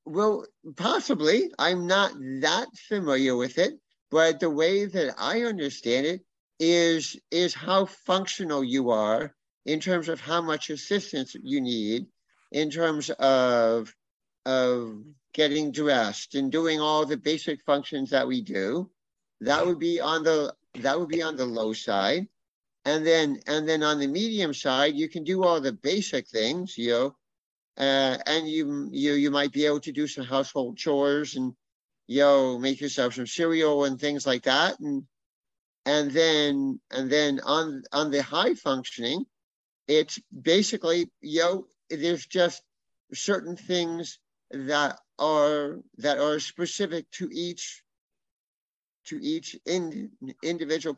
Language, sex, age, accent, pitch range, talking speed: English, male, 50-69, American, 140-175 Hz, 145 wpm